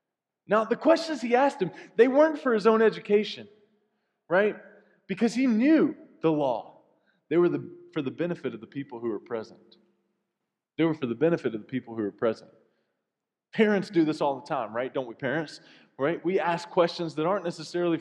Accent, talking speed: American, 195 wpm